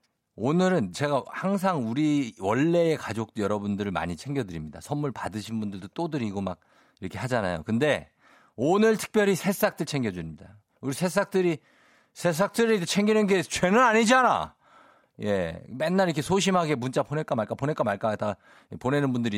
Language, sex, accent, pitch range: Korean, male, native, 110-170 Hz